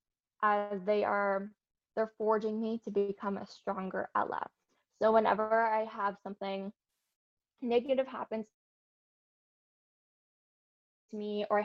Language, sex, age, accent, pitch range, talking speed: English, female, 20-39, American, 200-225 Hz, 115 wpm